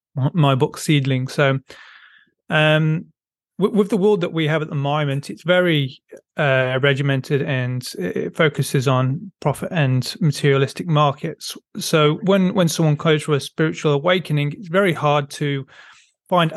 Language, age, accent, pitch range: English, 30-49, British, 145-175 Hz